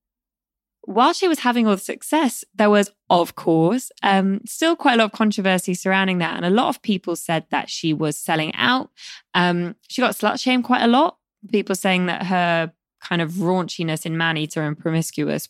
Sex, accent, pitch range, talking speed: female, British, 165-220 Hz, 195 wpm